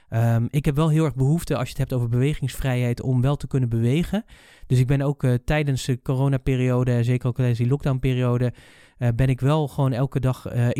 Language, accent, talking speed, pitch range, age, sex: Dutch, Dutch, 205 wpm, 120-145 Hz, 20-39, male